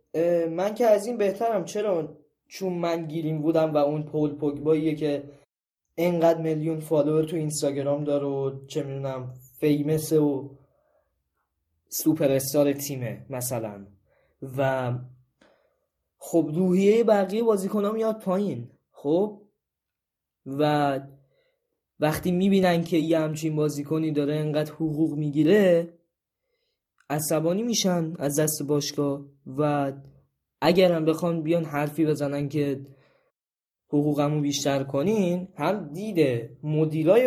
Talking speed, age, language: 110 wpm, 10-29, Persian